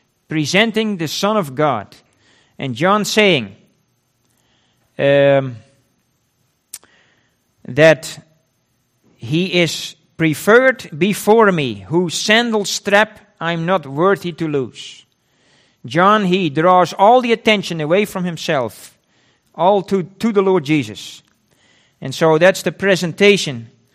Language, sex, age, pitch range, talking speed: English, male, 50-69, 145-195 Hz, 110 wpm